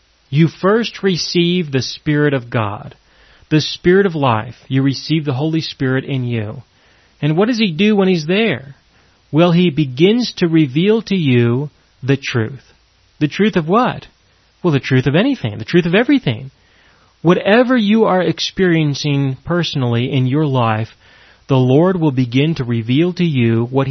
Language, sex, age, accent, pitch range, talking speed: English, male, 40-59, American, 130-180 Hz, 165 wpm